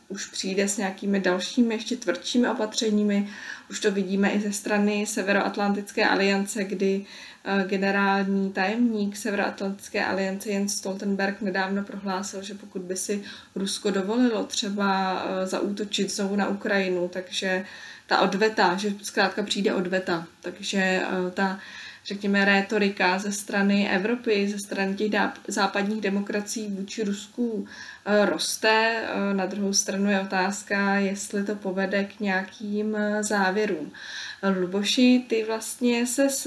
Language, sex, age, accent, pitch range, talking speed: Czech, female, 20-39, native, 195-220 Hz, 120 wpm